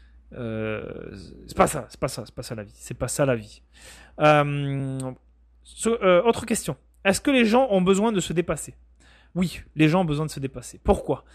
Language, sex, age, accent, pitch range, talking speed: French, male, 30-49, French, 125-175 Hz, 210 wpm